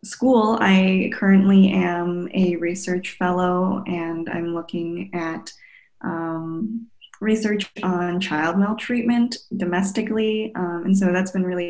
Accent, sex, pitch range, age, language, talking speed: American, female, 170-195 Hz, 20-39, English, 120 wpm